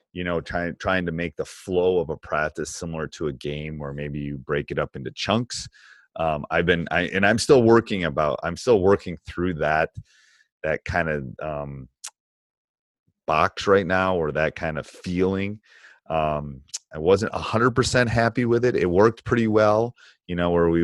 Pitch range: 75-95 Hz